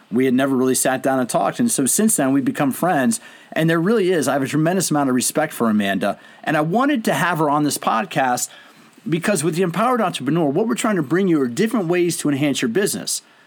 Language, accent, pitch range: English, American, 145-215 Hz